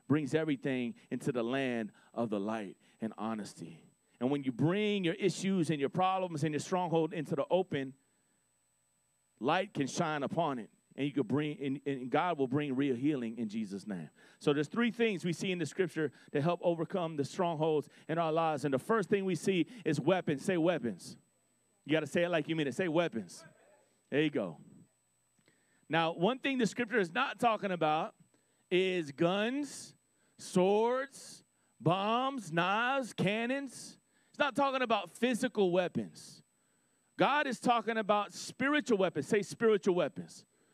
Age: 30-49